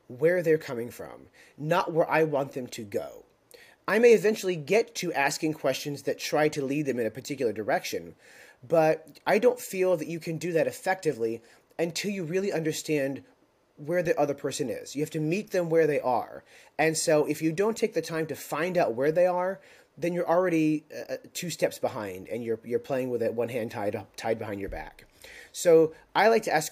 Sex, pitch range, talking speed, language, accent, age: male, 140-180 Hz, 210 wpm, English, American, 30-49